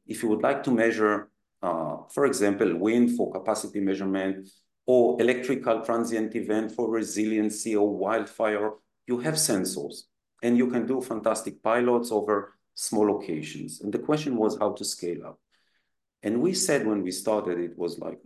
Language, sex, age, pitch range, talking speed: English, male, 40-59, 100-120 Hz, 165 wpm